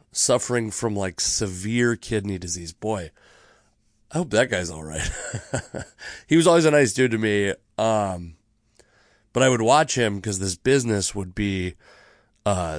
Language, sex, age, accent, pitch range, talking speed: English, male, 30-49, American, 100-120 Hz, 155 wpm